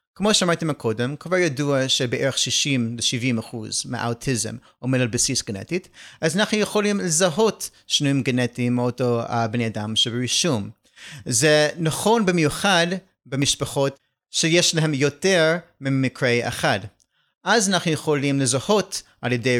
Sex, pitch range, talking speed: male, 125-170 Hz, 115 wpm